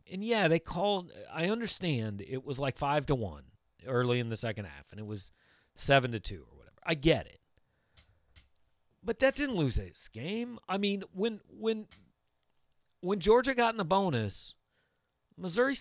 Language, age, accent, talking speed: English, 40-59, American, 170 wpm